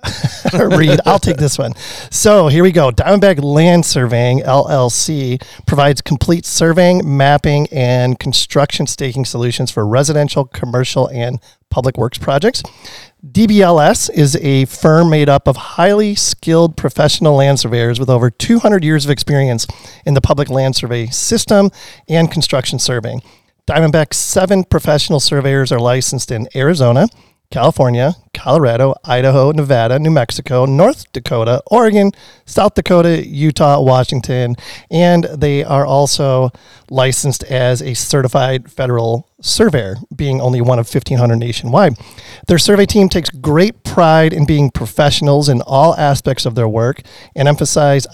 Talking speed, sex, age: 135 wpm, male, 40-59